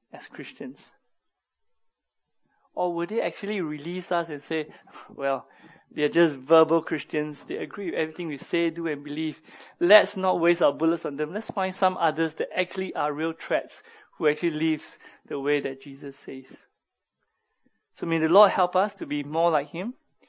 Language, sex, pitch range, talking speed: English, male, 150-175 Hz, 175 wpm